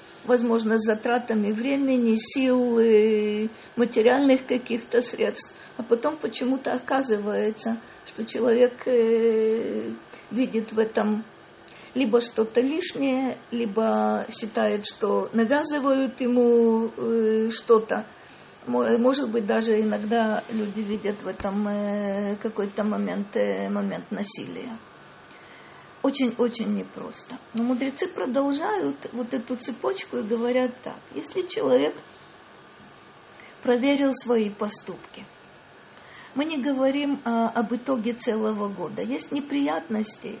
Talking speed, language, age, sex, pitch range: 90 wpm, Russian, 50-69, female, 215-255 Hz